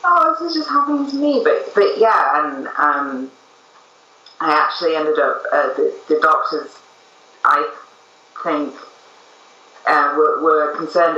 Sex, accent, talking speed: female, British, 140 wpm